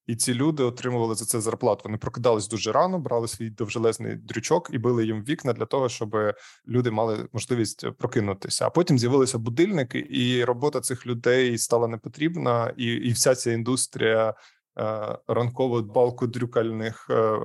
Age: 20-39